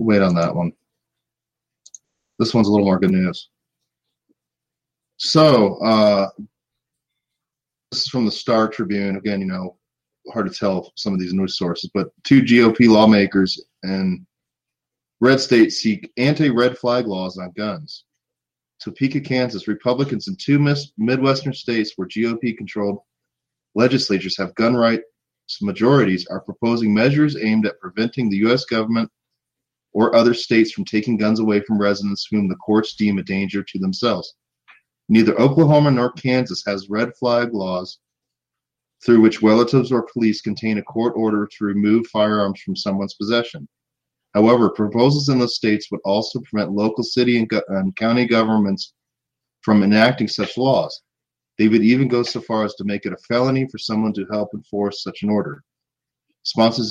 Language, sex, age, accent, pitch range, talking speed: English, male, 30-49, American, 100-125 Hz, 155 wpm